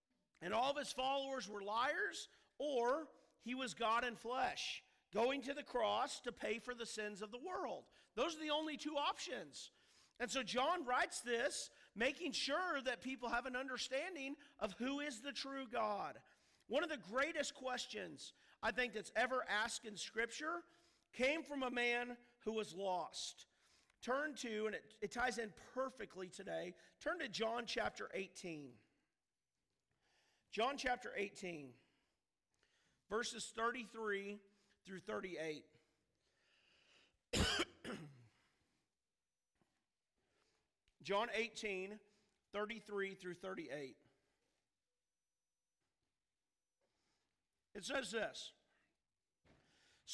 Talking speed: 115 wpm